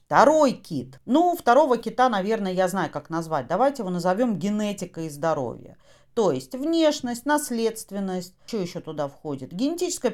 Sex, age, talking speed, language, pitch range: female, 40-59, 150 wpm, Russian, 175-240 Hz